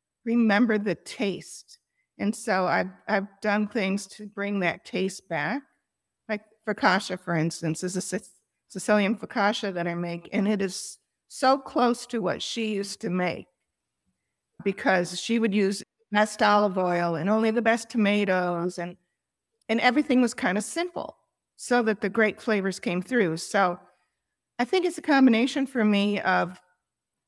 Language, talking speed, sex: English, 155 wpm, female